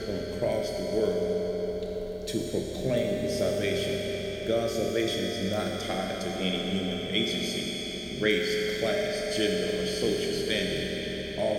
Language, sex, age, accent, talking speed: English, male, 40-59, American, 115 wpm